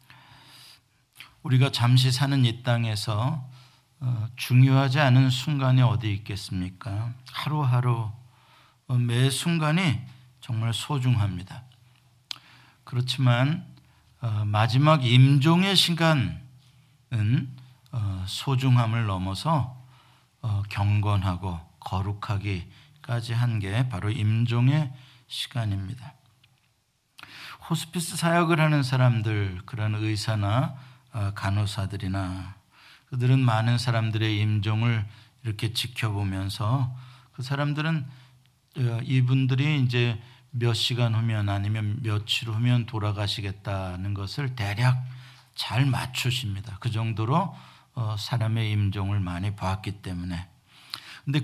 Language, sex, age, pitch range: Korean, male, 50-69, 110-130 Hz